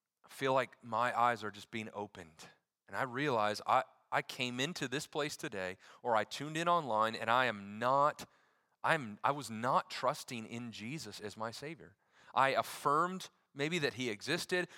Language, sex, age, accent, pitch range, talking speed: English, male, 30-49, American, 105-145 Hz, 180 wpm